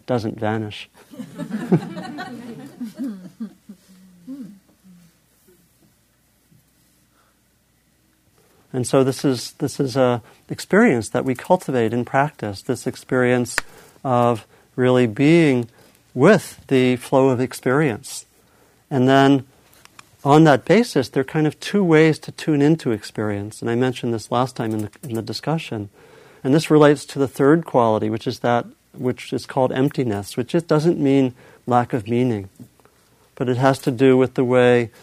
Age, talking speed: 50-69, 135 wpm